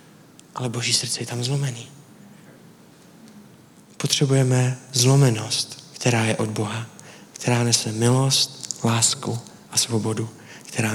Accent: native